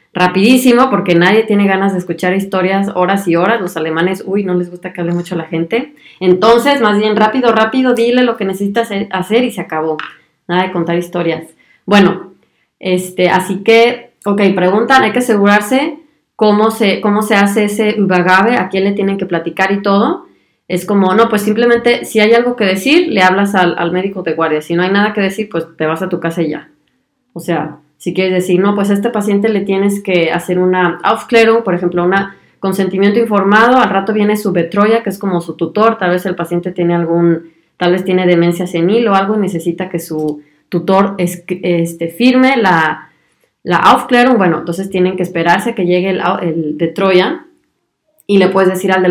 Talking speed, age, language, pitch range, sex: 205 wpm, 20-39, Spanish, 175-215 Hz, female